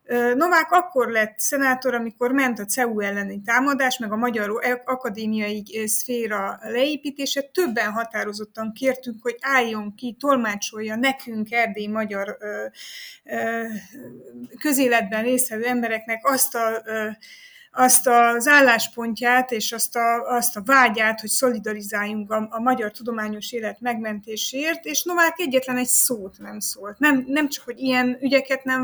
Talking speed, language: 125 wpm, Hungarian